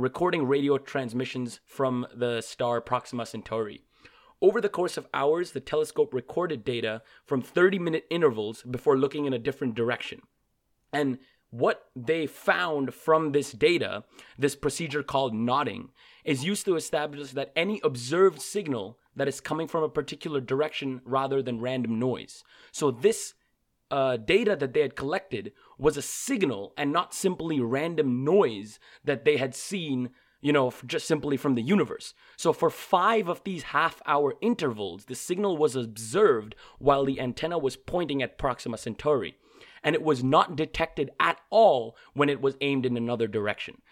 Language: English